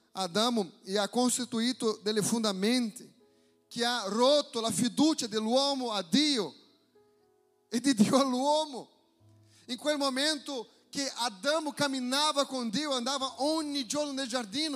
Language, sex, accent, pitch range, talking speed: Italian, male, Brazilian, 235-300 Hz, 140 wpm